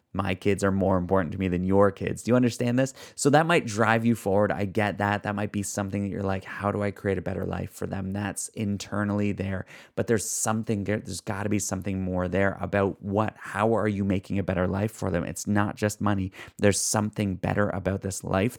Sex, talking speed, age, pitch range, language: male, 240 wpm, 30-49, 95-105 Hz, English